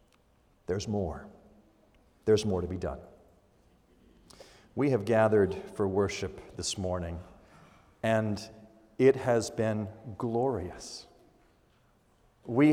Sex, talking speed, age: male, 95 wpm, 50-69